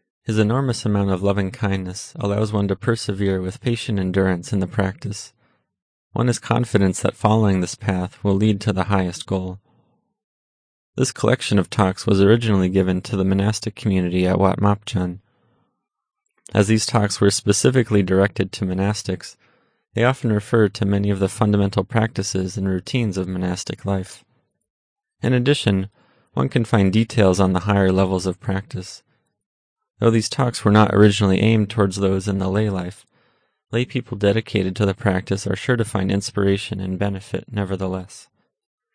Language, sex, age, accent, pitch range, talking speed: English, male, 30-49, American, 95-110 Hz, 160 wpm